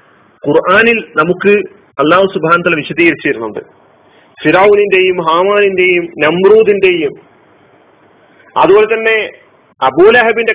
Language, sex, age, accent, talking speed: Malayalam, male, 40-59, native, 75 wpm